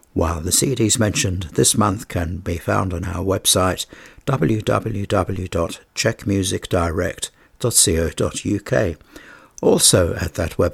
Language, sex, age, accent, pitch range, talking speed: English, male, 60-79, British, 85-105 Hz, 95 wpm